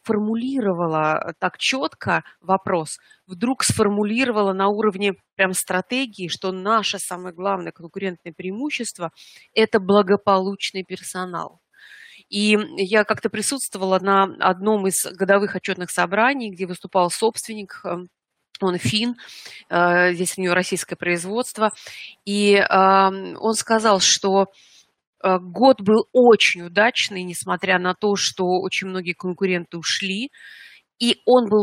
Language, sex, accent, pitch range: Russian, female, native, 185-225 Hz